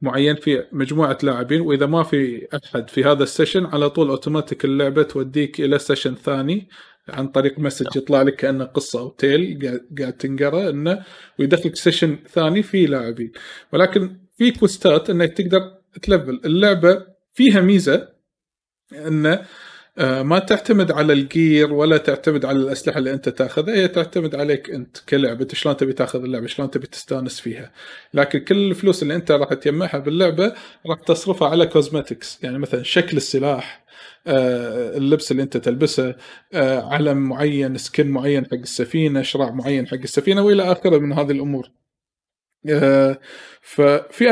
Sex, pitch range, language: male, 135-170 Hz, Arabic